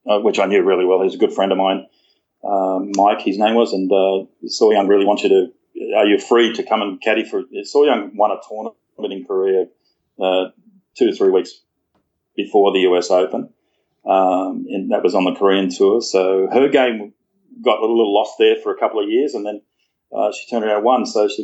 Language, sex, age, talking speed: English, male, 30-49, 225 wpm